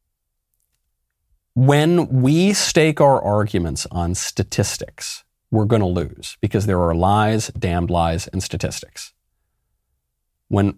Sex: male